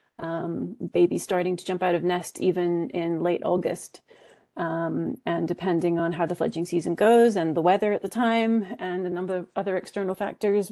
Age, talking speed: 30-49, 190 wpm